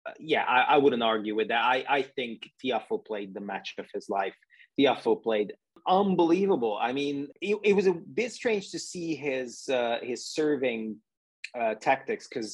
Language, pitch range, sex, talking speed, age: English, 105-155 Hz, male, 175 wpm, 30-49